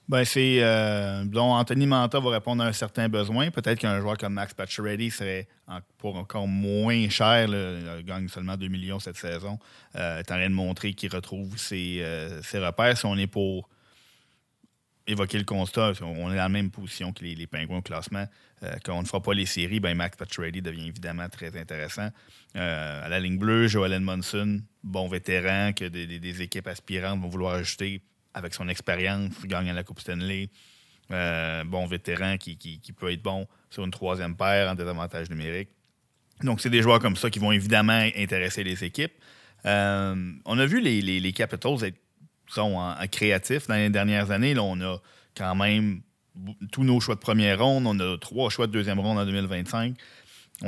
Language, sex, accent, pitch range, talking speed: French, male, Canadian, 90-110 Hz, 200 wpm